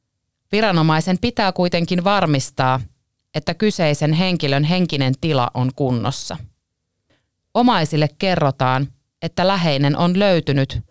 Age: 30-49